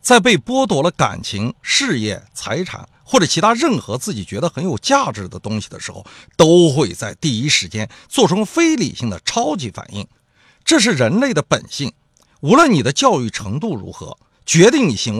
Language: Chinese